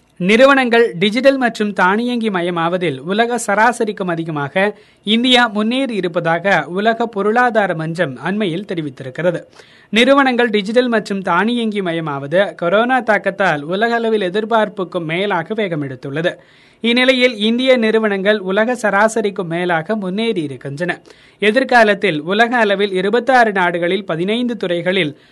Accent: native